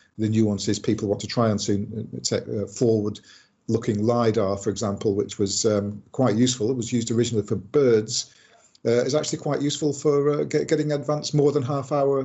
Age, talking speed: 50-69, 185 wpm